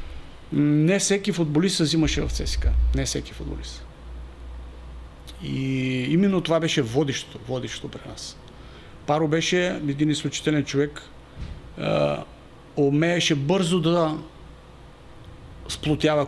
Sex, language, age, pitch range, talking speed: male, Bulgarian, 50-69, 140-175 Hz, 95 wpm